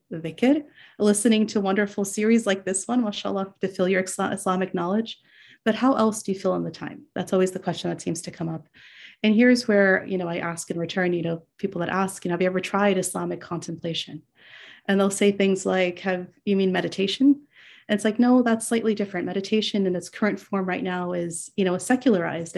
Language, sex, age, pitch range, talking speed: English, female, 30-49, 180-205 Hz, 220 wpm